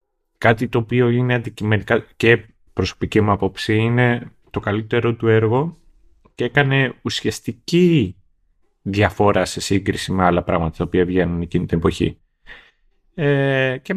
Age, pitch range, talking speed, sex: 30-49, 95-125 Hz, 130 wpm, male